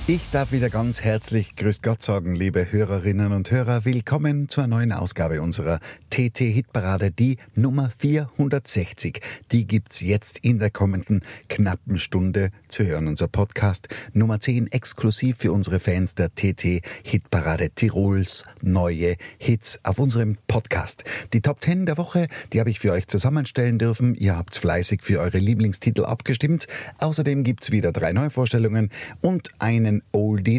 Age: 50-69